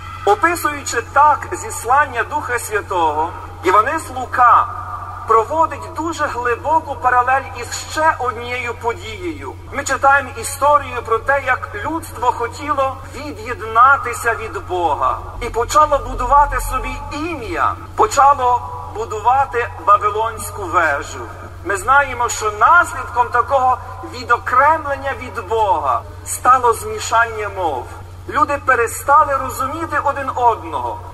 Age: 40-59